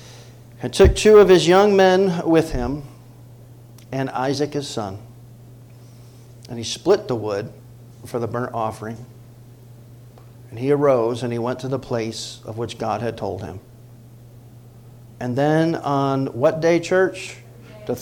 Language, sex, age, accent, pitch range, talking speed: English, male, 40-59, American, 120-135 Hz, 145 wpm